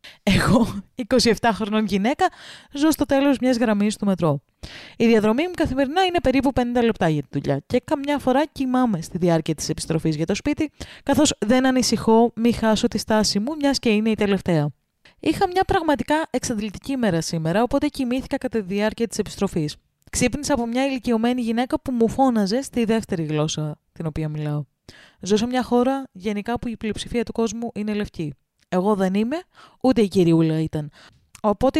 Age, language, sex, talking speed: 20-39, Greek, female, 175 wpm